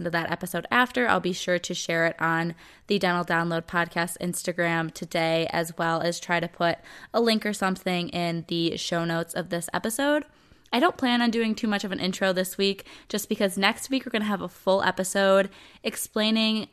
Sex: female